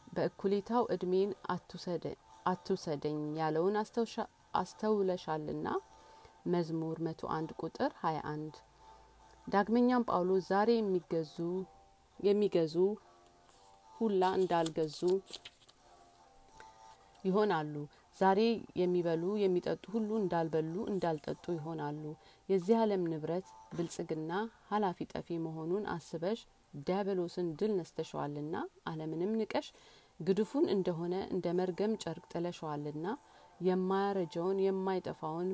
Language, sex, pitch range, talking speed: Amharic, female, 160-195 Hz, 80 wpm